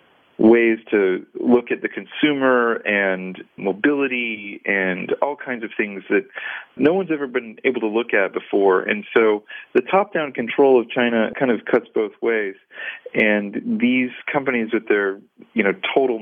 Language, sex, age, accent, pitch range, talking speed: English, male, 40-59, American, 105-140 Hz, 160 wpm